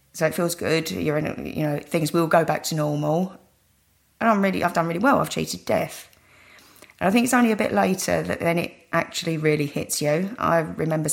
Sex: female